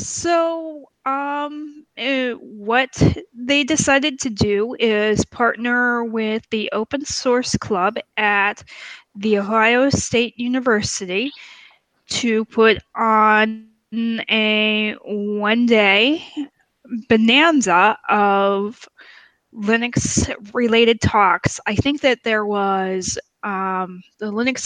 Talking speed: 90 wpm